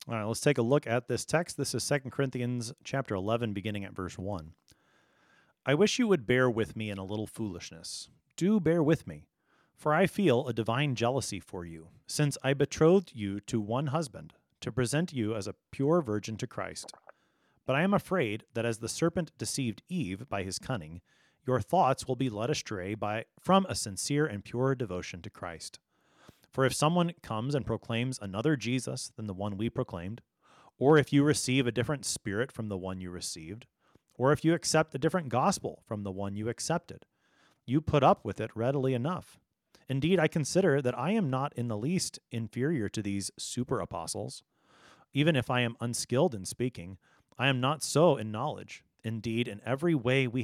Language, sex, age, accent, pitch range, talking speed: English, male, 30-49, American, 105-150 Hz, 195 wpm